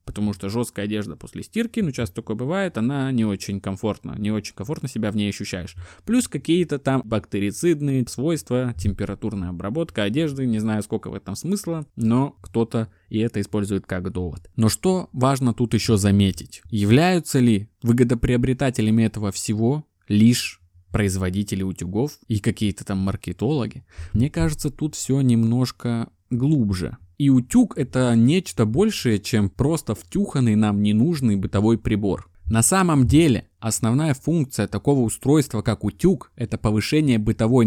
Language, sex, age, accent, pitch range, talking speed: Russian, male, 20-39, native, 105-140 Hz, 145 wpm